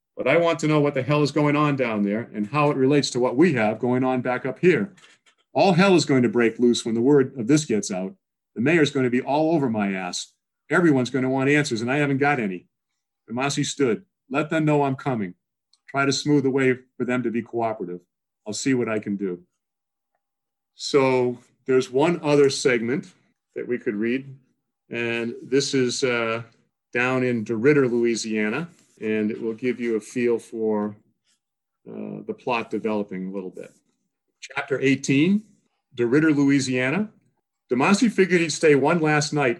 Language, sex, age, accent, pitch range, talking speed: English, male, 50-69, American, 115-145 Hz, 190 wpm